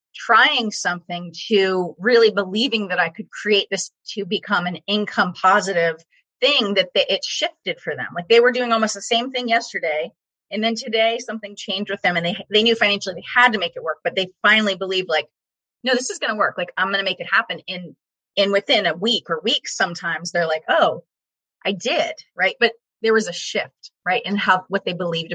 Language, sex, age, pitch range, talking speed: English, female, 30-49, 175-225 Hz, 220 wpm